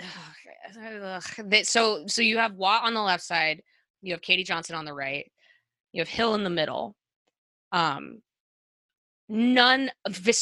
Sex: female